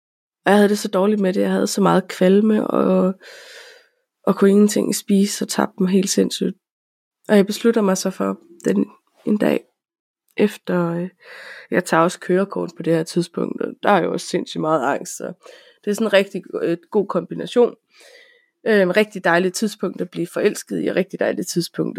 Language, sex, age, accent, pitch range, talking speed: Danish, female, 20-39, native, 180-220 Hz, 185 wpm